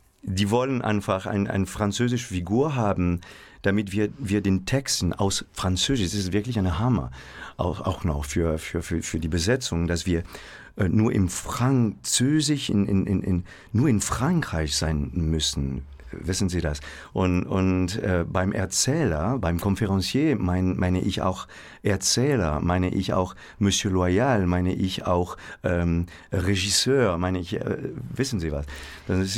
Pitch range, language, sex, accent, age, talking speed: 85-110 Hz, German, male, German, 50-69, 155 wpm